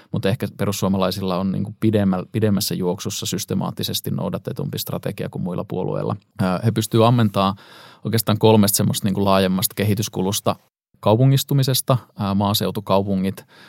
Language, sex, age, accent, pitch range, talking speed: Finnish, male, 20-39, native, 95-110 Hz, 105 wpm